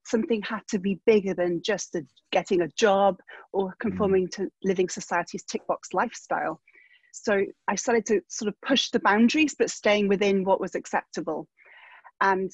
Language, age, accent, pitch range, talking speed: English, 30-49, British, 185-215 Hz, 165 wpm